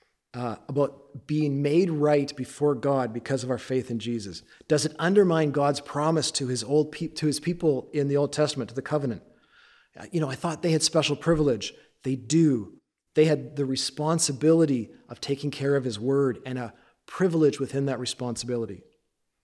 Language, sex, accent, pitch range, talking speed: English, male, American, 130-155 Hz, 175 wpm